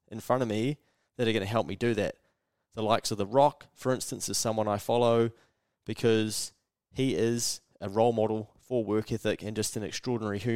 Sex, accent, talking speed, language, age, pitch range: male, Australian, 205 wpm, English, 20-39, 105-120 Hz